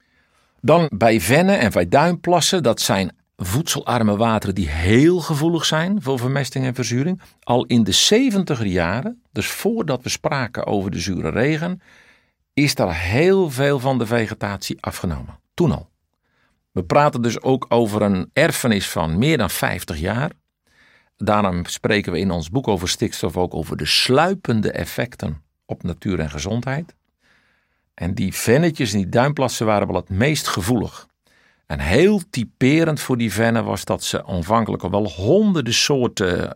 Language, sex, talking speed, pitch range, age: Dutch, male, 155 wpm, 95-140 Hz, 50-69